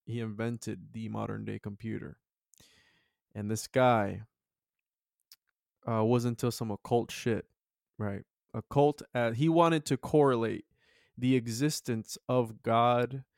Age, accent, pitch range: 20-39, American, 110-125 Hz